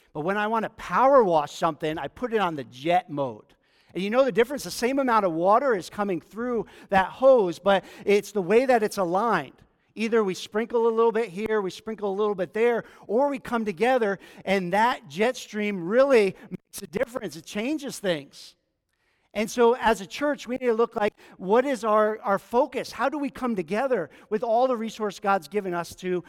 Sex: male